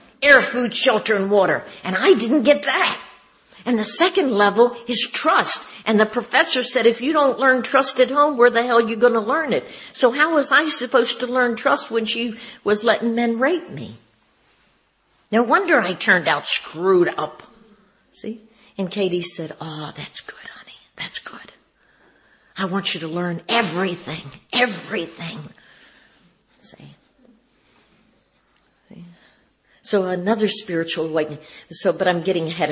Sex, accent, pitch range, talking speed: female, American, 175-240 Hz, 155 wpm